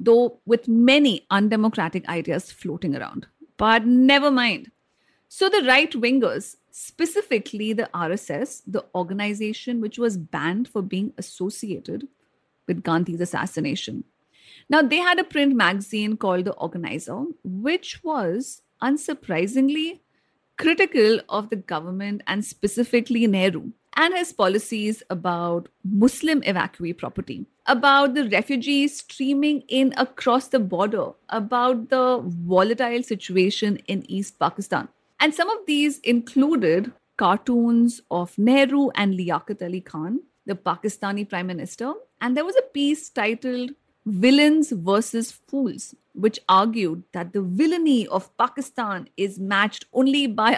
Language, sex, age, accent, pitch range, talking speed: English, female, 50-69, Indian, 195-270 Hz, 125 wpm